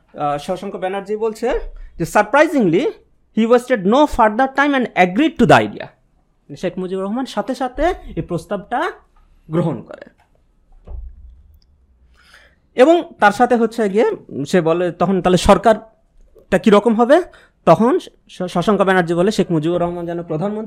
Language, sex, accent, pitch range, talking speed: English, male, Indian, 165-250 Hz, 95 wpm